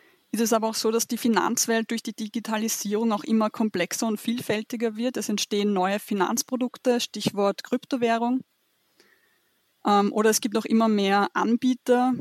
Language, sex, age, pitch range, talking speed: German, female, 20-39, 205-235 Hz, 150 wpm